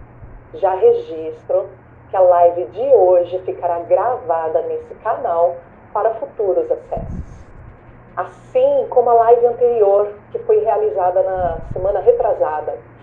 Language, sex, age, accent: Portuguese, female, 40-59, Brazilian